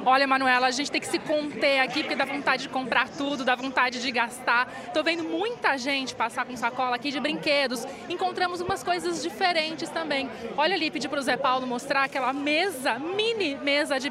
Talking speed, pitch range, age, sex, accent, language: 195 wpm, 255-320 Hz, 20-39, female, Brazilian, Portuguese